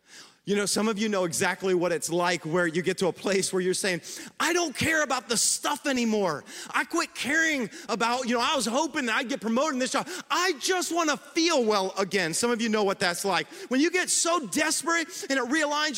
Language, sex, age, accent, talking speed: English, male, 30-49, American, 240 wpm